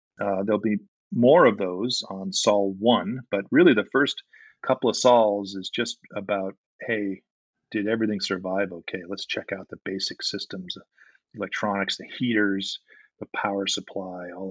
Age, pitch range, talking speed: 40-59, 100-120 Hz, 155 wpm